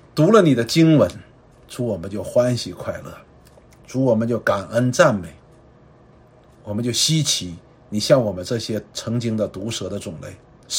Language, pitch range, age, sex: Chinese, 90-120 Hz, 50-69, male